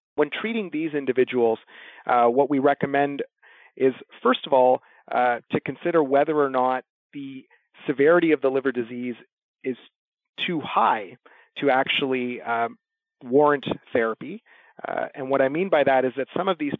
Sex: male